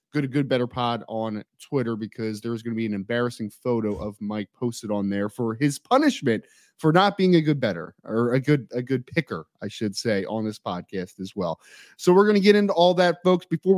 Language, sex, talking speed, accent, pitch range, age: English, male, 230 wpm, American, 125-175 Hz, 30-49